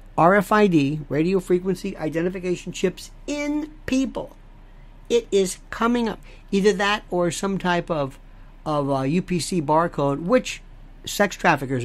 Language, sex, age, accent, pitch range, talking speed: English, male, 50-69, American, 145-210 Hz, 120 wpm